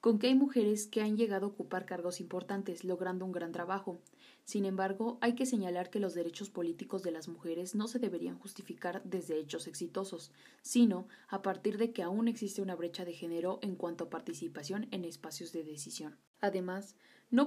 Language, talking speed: English, 190 wpm